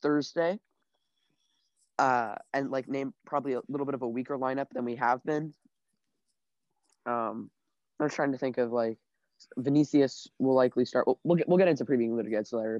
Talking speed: 175 wpm